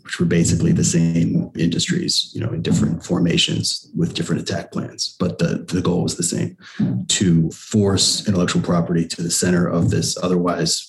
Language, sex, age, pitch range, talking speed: English, male, 30-49, 85-110 Hz, 175 wpm